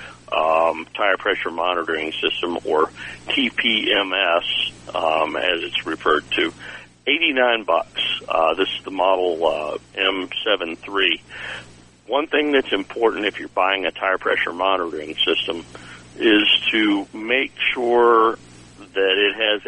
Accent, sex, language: American, male, English